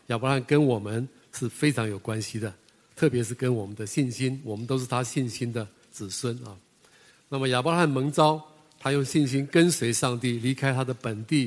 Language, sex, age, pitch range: Chinese, male, 50-69, 115-140 Hz